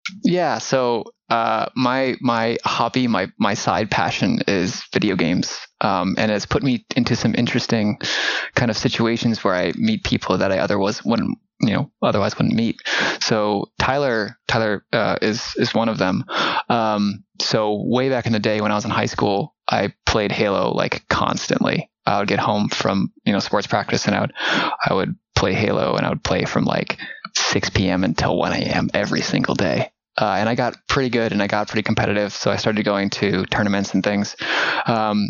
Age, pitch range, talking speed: 20-39, 105-125 Hz, 195 wpm